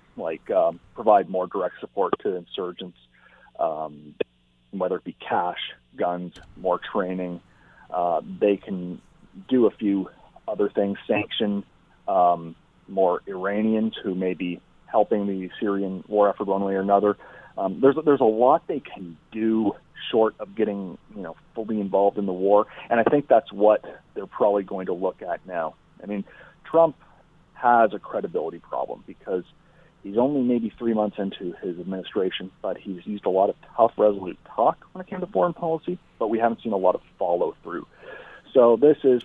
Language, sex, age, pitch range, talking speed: English, male, 40-59, 95-110 Hz, 170 wpm